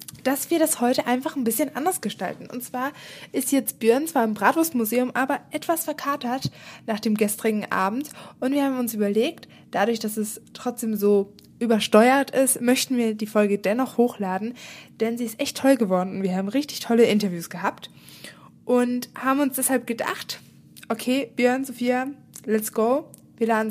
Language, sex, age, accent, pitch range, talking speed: German, female, 20-39, German, 205-260 Hz, 170 wpm